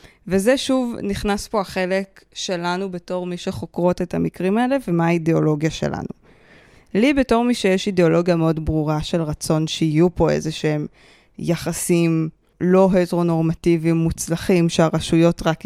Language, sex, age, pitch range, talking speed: Hebrew, female, 20-39, 160-195 Hz, 130 wpm